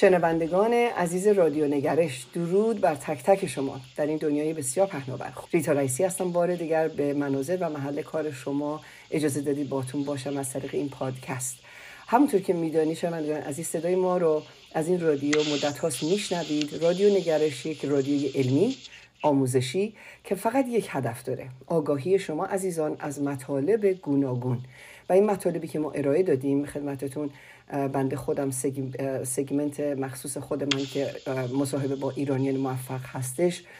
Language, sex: Persian, female